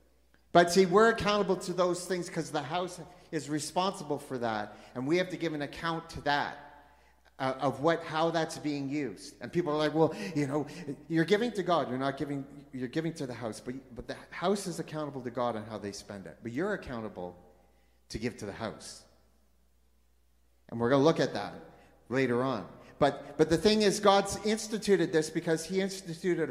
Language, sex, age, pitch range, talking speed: English, male, 40-59, 135-180 Hz, 205 wpm